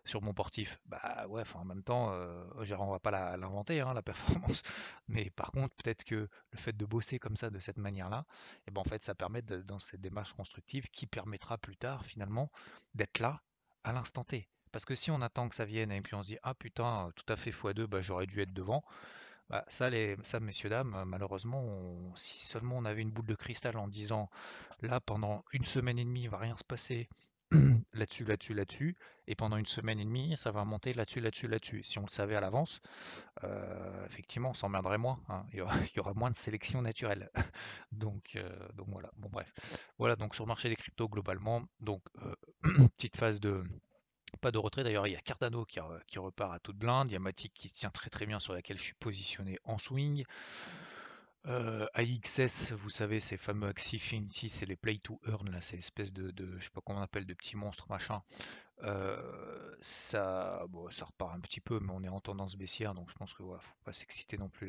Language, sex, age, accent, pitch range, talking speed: French, male, 30-49, French, 95-120 Hz, 230 wpm